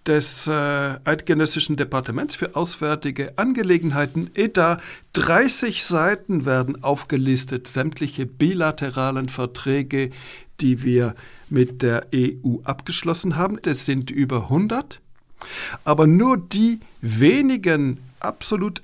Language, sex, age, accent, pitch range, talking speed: German, male, 60-79, German, 130-165 Hz, 95 wpm